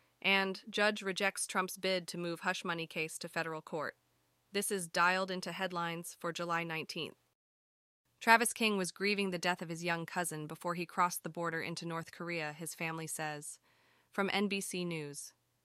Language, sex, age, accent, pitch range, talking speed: English, female, 20-39, American, 170-225 Hz, 175 wpm